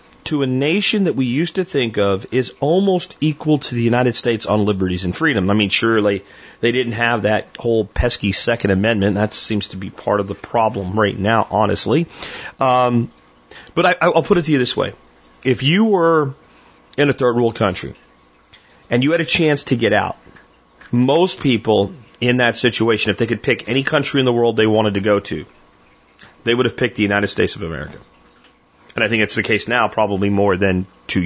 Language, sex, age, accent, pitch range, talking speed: English, male, 40-59, American, 100-145 Hz, 205 wpm